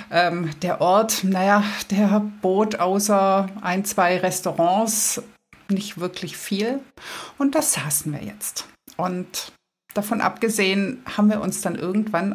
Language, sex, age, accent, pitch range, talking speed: German, female, 50-69, German, 165-210 Hz, 125 wpm